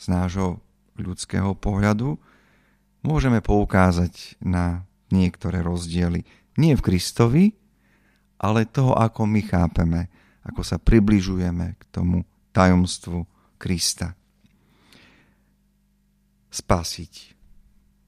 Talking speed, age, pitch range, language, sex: 85 wpm, 50-69, 90-110 Hz, Slovak, male